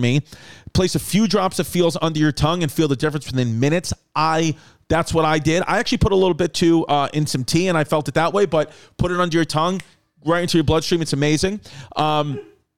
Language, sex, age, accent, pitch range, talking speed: English, male, 40-59, American, 155-190 Hz, 240 wpm